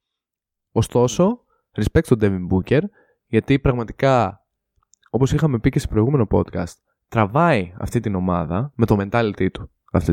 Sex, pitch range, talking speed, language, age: male, 100-135 Hz, 135 wpm, Greek, 20-39